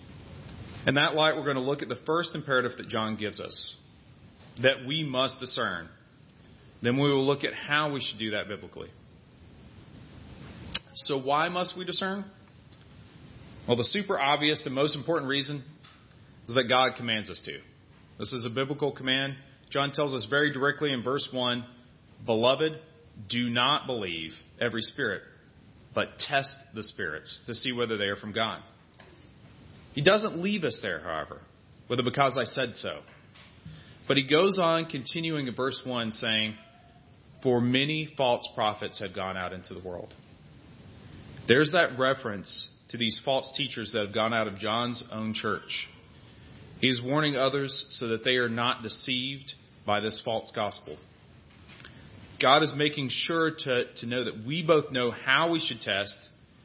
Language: English